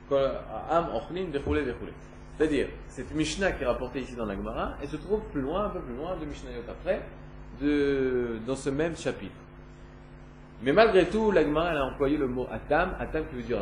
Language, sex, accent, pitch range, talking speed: French, male, French, 115-165 Hz, 180 wpm